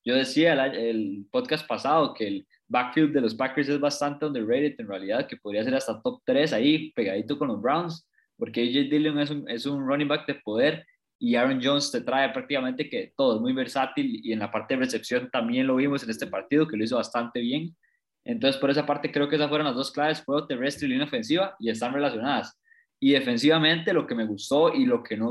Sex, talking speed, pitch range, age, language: male, 230 wpm, 125-160 Hz, 20-39, Spanish